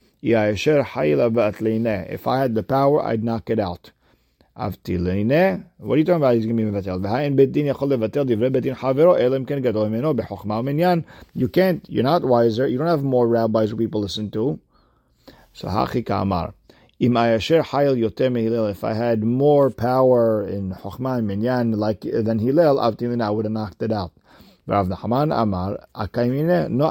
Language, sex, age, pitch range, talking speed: English, male, 50-69, 110-145 Hz, 100 wpm